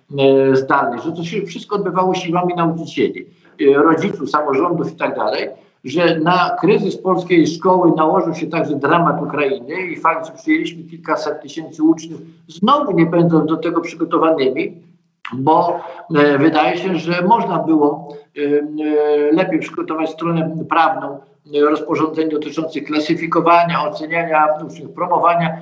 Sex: male